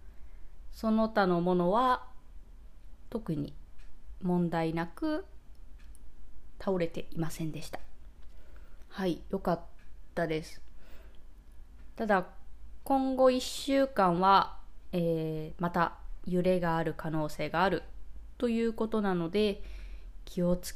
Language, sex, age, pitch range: Japanese, female, 20-39, 155-210 Hz